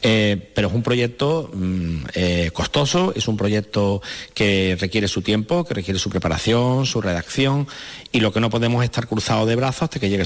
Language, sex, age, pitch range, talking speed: Spanish, male, 40-59, 105-130 Hz, 195 wpm